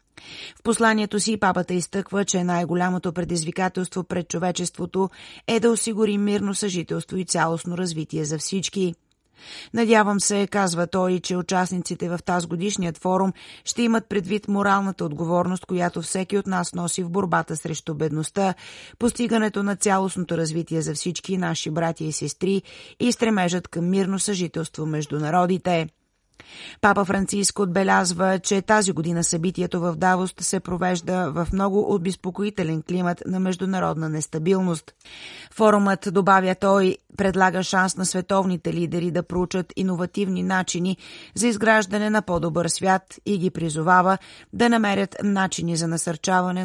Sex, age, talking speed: female, 30-49, 135 wpm